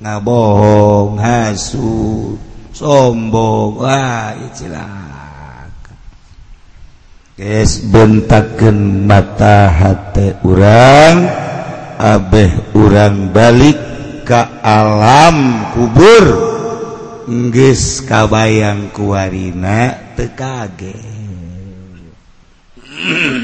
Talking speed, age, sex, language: 50 wpm, 50-69, male, Indonesian